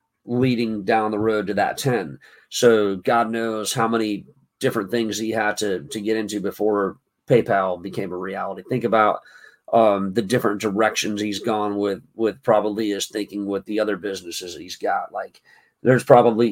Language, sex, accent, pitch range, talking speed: English, male, American, 100-115 Hz, 175 wpm